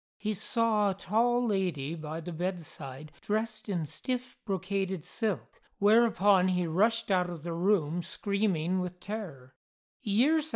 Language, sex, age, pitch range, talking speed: English, male, 60-79, 165-210 Hz, 135 wpm